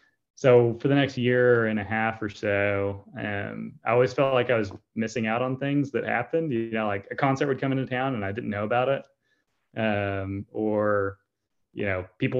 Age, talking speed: 20-39, 210 wpm